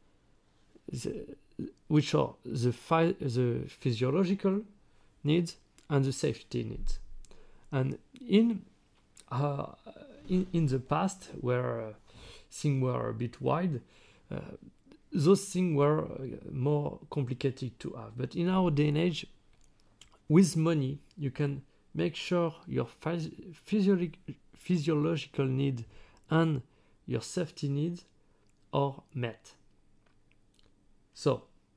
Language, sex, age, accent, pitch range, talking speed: English, male, 40-59, French, 125-165 Hz, 110 wpm